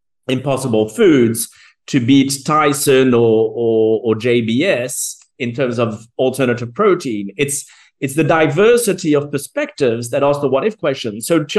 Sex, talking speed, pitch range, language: male, 145 wpm, 120-160 Hz, English